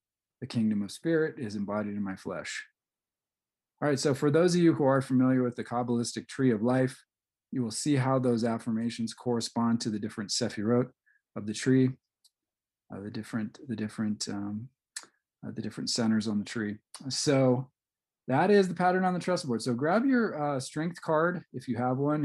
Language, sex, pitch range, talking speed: English, male, 110-140 Hz, 190 wpm